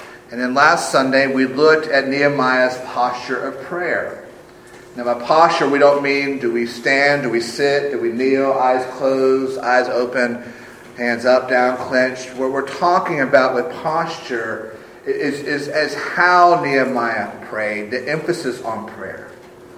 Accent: American